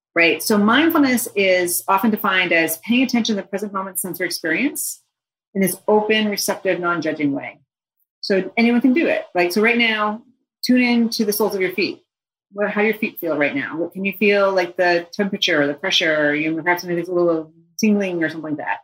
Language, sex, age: English, female, 40-59